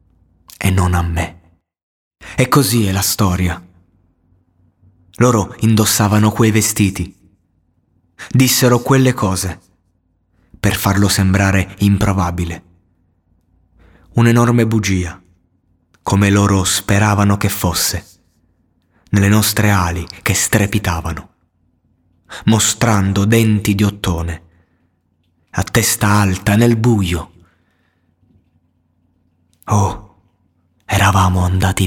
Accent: native